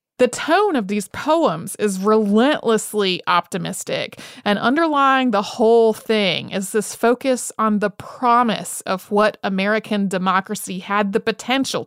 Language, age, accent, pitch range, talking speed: English, 30-49, American, 195-235 Hz, 130 wpm